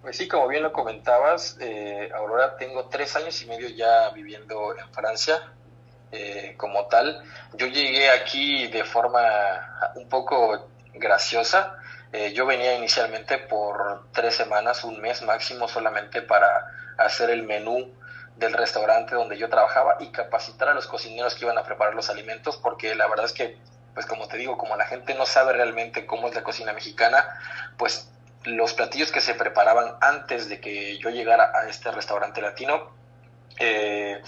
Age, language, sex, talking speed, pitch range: 20-39, Spanish, male, 165 wpm, 110-130 Hz